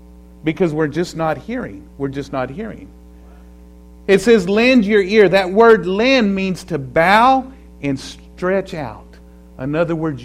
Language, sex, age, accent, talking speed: English, male, 50-69, American, 150 wpm